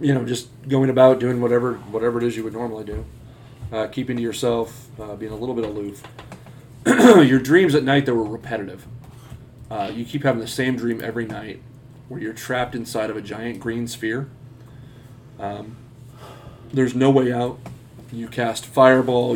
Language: English